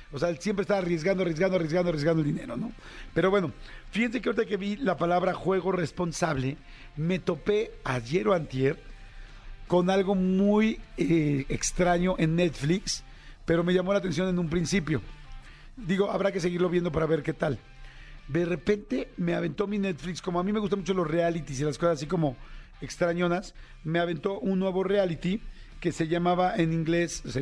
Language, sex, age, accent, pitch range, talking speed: Spanish, male, 50-69, Mexican, 160-190 Hz, 180 wpm